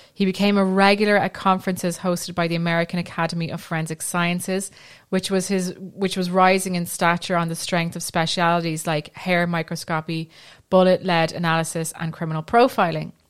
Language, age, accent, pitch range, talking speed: English, 20-39, British, 170-190 Hz, 165 wpm